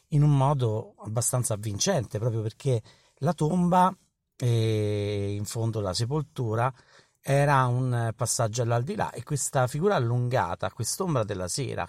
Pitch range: 105-140 Hz